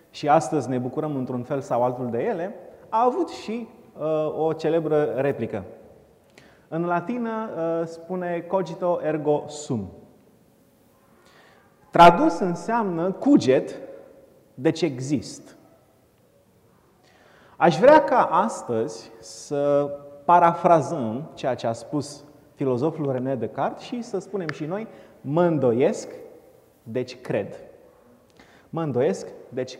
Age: 30-49